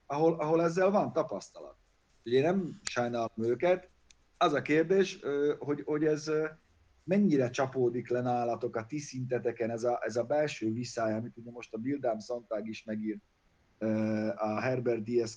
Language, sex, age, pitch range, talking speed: Hungarian, male, 30-49, 110-135 Hz, 155 wpm